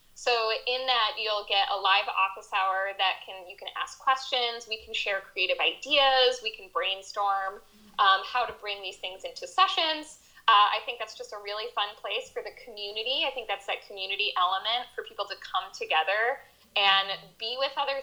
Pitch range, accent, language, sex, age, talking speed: 200-270 Hz, American, English, female, 10-29, 195 wpm